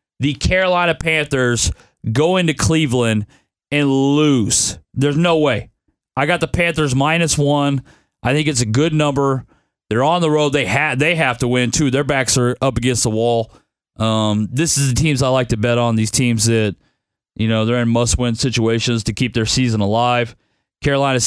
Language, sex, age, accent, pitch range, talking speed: English, male, 30-49, American, 120-150 Hz, 185 wpm